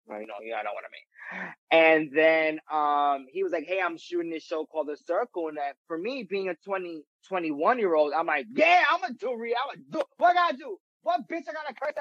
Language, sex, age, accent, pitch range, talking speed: English, male, 20-39, American, 155-215 Hz, 255 wpm